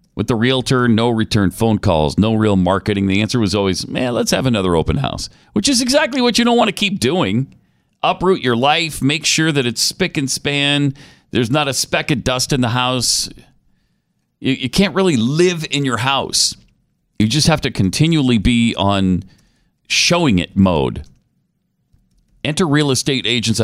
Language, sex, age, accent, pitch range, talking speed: English, male, 40-59, American, 100-140 Hz, 180 wpm